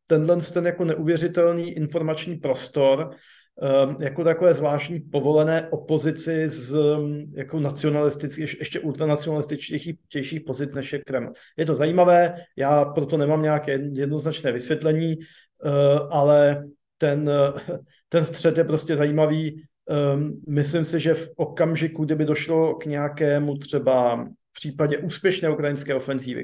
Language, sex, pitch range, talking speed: Slovak, male, 140-160 Hz, 125 wpm